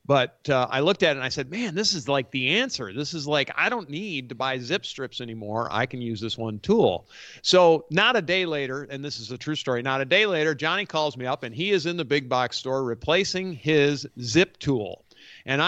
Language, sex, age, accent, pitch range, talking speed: English, male, 50-69, American, 125-160 Hz, 245 wpm